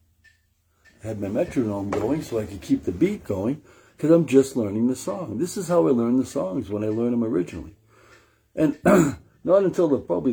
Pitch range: 90-135 Hz